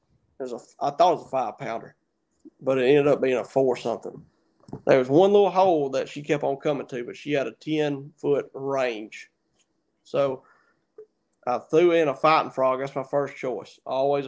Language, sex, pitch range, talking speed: English, male, 135-155 Hz, 200 wpm